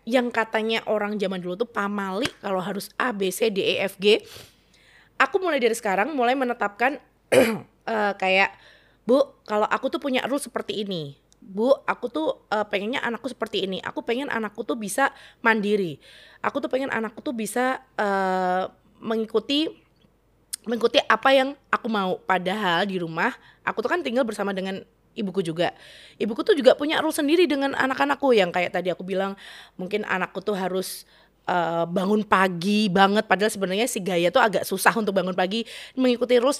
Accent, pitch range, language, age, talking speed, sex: native, 195-260 Hz, Indonesian, 20-39, 170 wpm, female